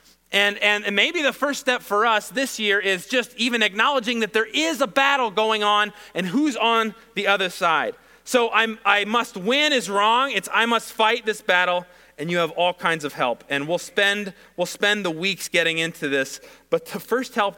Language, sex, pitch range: English, male, 145-210 Hz